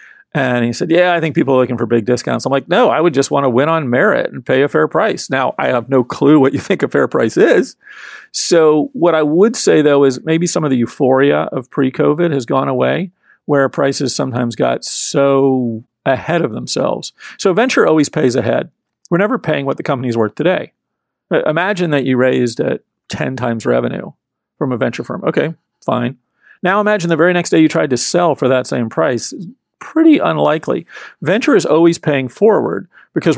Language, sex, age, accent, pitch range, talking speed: English, male, 40-59, American, 125-165 Hz, 205 wpm